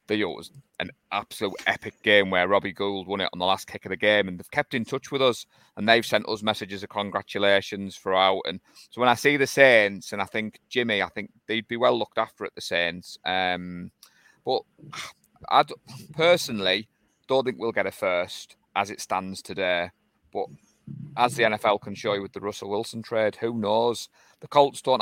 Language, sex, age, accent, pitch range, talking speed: English, male, 30-49, British, 95-115 Hz, 205 wpm